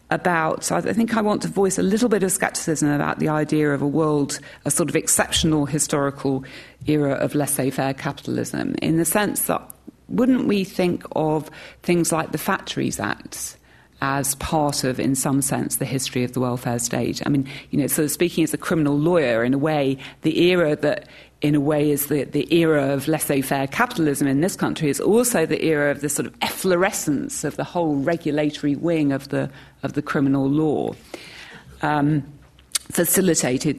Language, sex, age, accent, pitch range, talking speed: English, female, 40-59, British, 140-170 Hz, 185 wpm